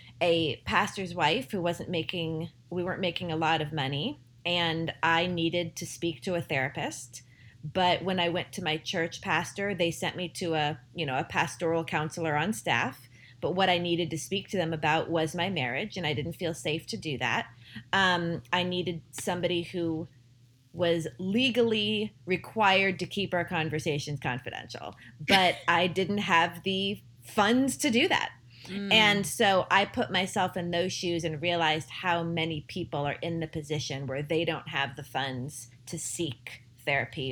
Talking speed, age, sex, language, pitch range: 175 wpm, 30-49, female, English, 125-175 Hz